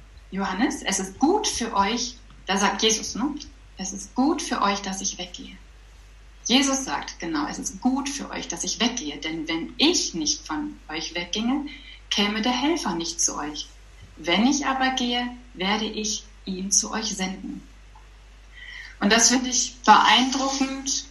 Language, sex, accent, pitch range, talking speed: German, female, German, 195-255 Hz, 160 wpm